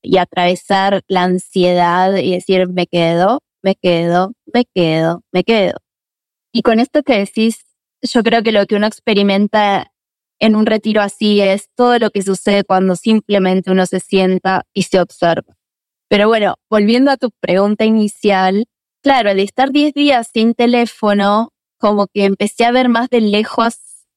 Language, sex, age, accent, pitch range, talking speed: Spanish, female, 20-39, Argentinian, 185-225 Hz, 160 wpm